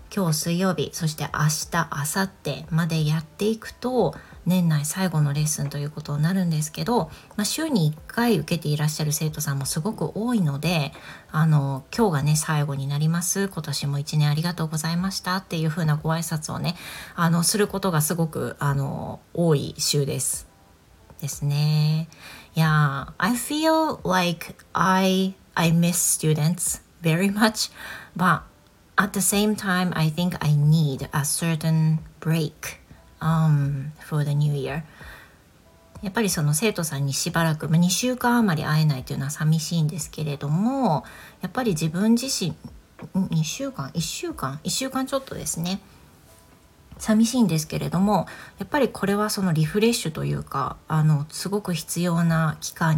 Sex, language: female, Japanese